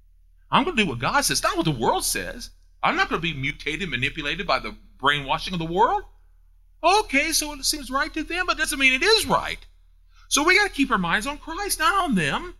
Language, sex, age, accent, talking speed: English, male, 40-59, American, 250 wpm